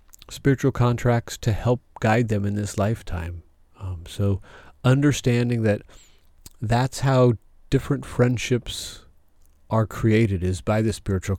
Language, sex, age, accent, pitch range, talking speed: English, male, 40-59, American, 95-115 Hz, 120 wpm